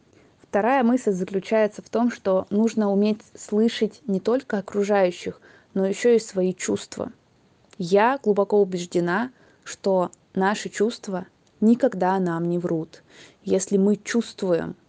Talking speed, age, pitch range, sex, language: 120 wpm, 20-39, 175-215 Hz, female, Russian